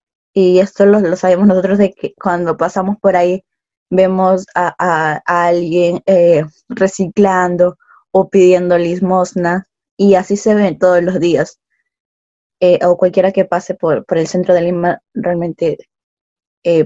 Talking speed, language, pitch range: 150 wpm, Spanish, 180-205 Hz